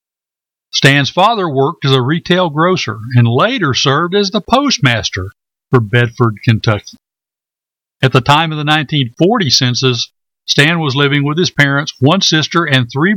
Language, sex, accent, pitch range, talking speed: English, male, American, 125-165 Hz, 150 wpm